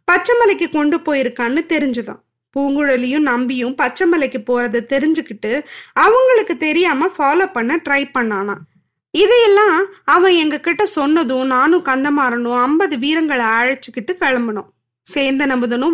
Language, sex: Tamil, female